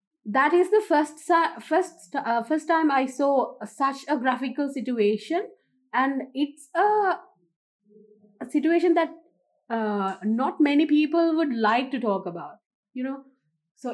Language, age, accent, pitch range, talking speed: English, 20-39, Indian, 220-300 Hz, 140 wpm